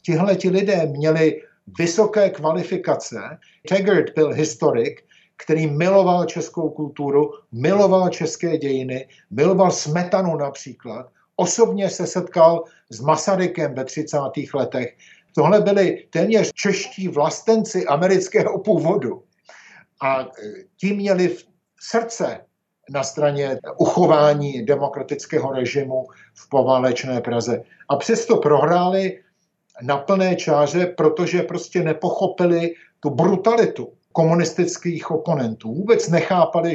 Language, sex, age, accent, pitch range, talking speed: Czech, male, 60-79, native, 145-185 Hz, 100 wpm